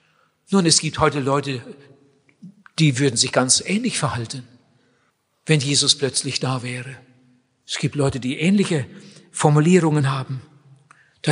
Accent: German